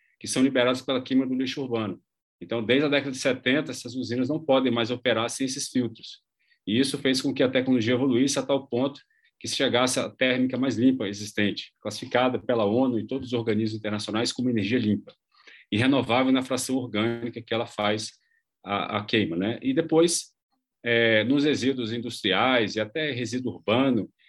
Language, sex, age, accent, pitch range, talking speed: Portuguese, male, 40-59, Brazilian, 115-135 Hz, 185 wpm